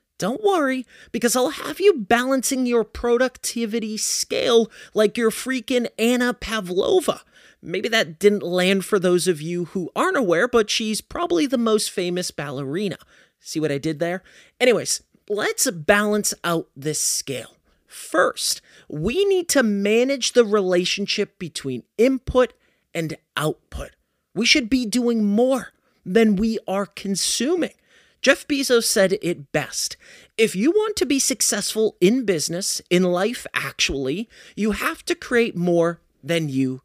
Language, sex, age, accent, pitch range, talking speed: English, male, 30-49, American, 185-260 Hz, 140 wpm